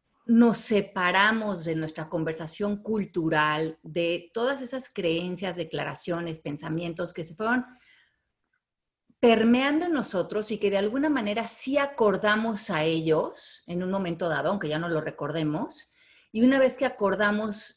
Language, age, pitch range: Spanish, 30-49, 170-230 Hz